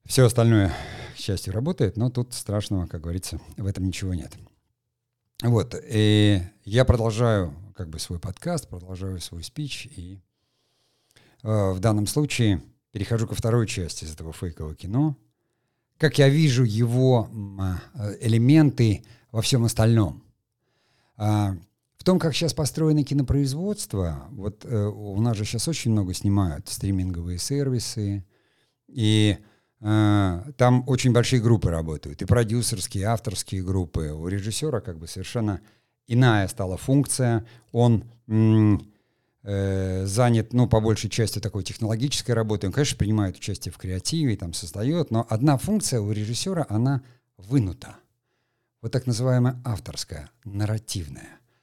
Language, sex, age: Russian, male, 50-69